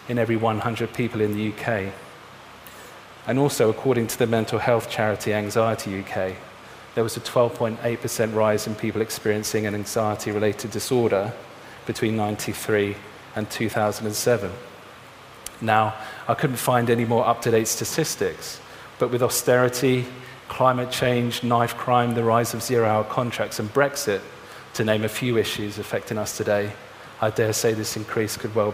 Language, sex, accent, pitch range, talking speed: English, male, British, 110-120 Hz, 145 wpm